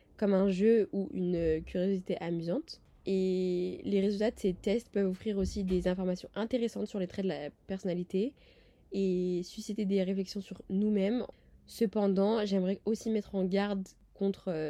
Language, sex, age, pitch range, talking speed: French, female, 20-39, 180-210 Hz, 155 wpm